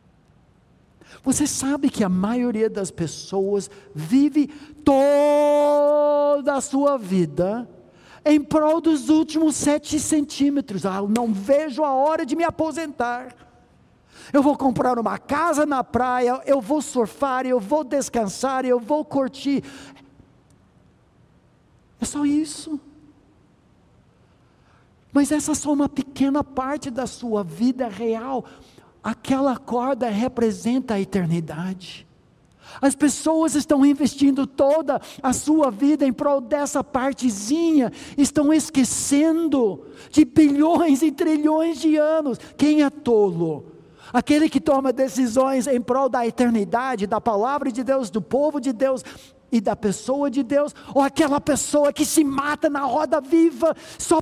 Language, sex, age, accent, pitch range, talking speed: Portuguese, male, 60-79, Brazilian, 245-300 Hz, 125 wpm